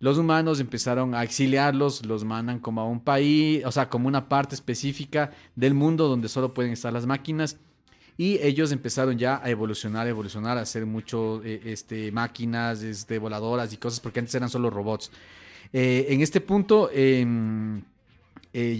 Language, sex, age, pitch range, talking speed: Spanish, male, 30-49, 115-150 Hz, 165 wpm